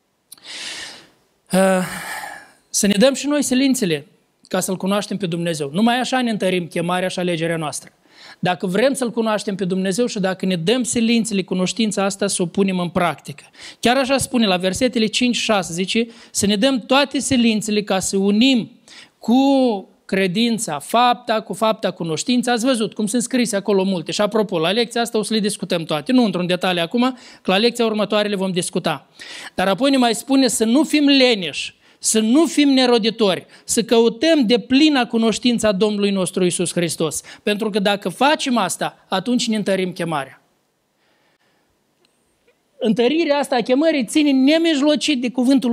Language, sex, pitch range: Romanian, male, 185-245 Hz